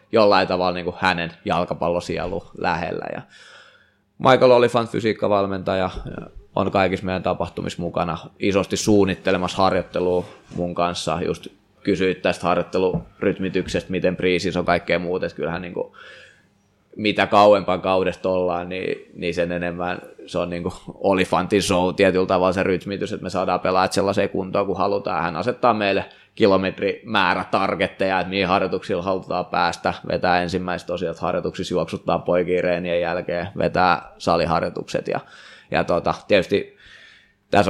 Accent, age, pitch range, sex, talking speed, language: native, 20-39, 90-100 Hz, male, 130 wpm, Finnish